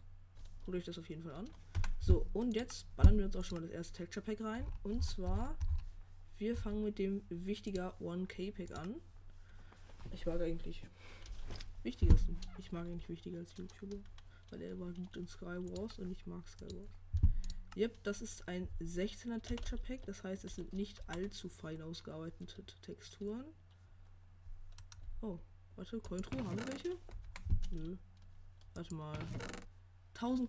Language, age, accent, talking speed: German, 20-39, German, 155 wpm